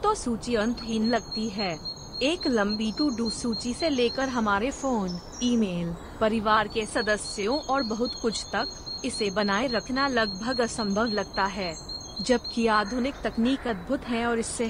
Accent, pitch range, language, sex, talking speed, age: native, 210-245 Hz, Hindi, female, 145 wpm, 30-49